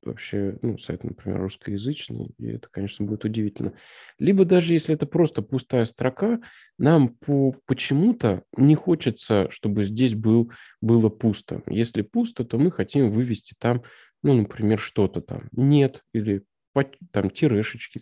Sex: male